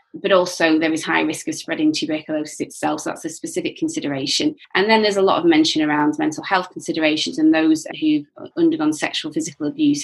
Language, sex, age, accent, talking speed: English, female, 20-39, British, 195 wpm